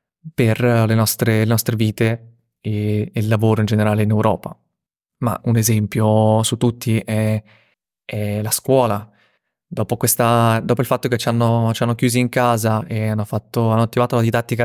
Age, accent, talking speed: 20-39, native, 175 wpm